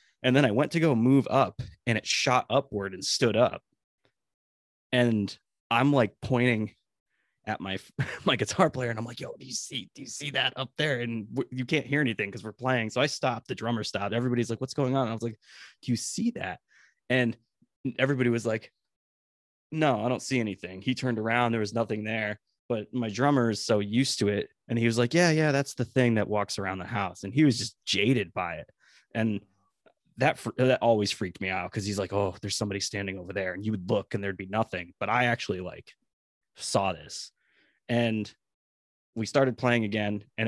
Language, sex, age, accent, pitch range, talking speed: English, male, 20-39, American, 105-130 Hz, 215 wpm